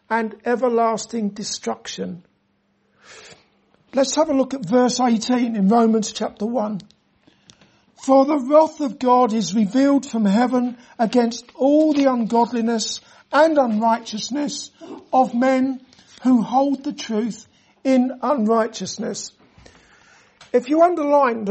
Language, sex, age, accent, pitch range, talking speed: English, male, 60-79, British, 220-265 Hz, 110 wpm